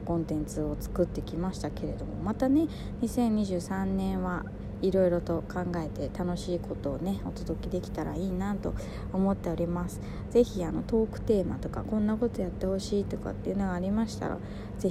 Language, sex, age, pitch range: Japanese, female, 20-39, 150-225 Hz